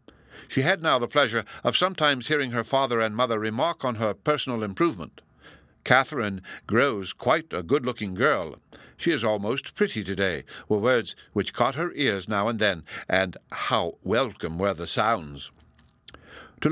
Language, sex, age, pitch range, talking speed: English, male, 60-79, 105-150 Hz, 160 wpm